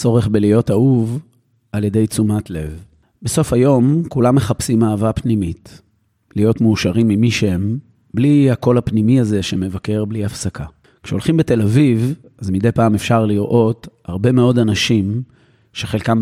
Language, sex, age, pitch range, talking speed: Hebrew, male, 30-49, 100-125 Hz, 130 wpm